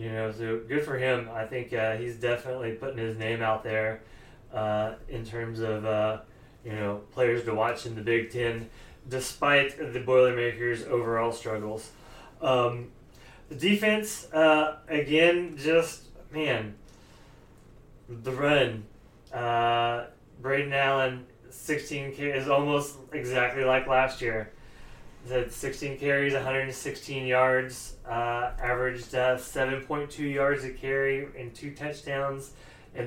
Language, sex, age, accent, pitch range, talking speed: English, male, 20-39, American, 115-145 Hz, 125 wpm